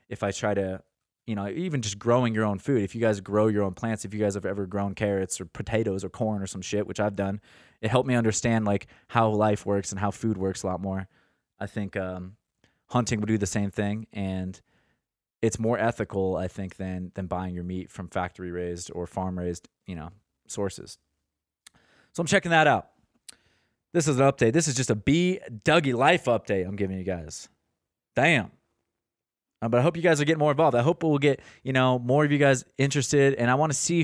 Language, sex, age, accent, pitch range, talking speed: English, male, 20-39, American, 100-135 Hz, 225 wpm